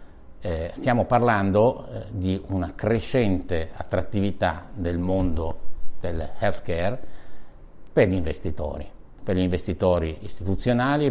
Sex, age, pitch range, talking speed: male, 50-69, 85-105 Hz, 105 wpm